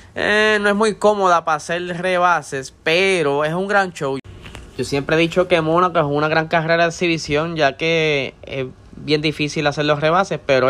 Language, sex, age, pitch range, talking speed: Spanish, male, 20-39, 125-160 Hz, 190 wpm